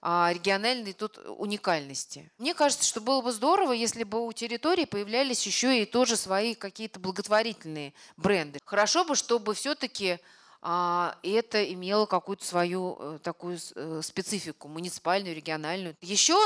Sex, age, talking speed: female, 30-49, 125 wpm